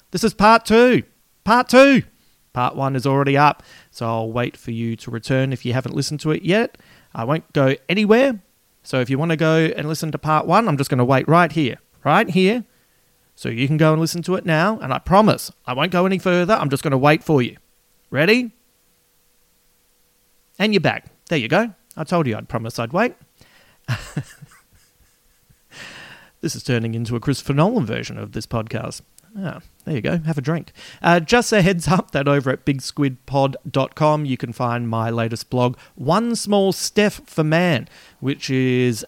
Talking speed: 195 wpm